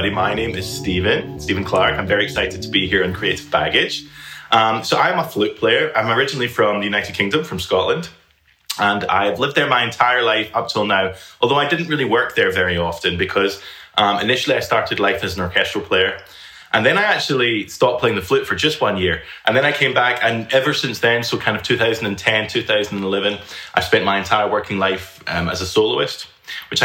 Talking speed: 210 wpm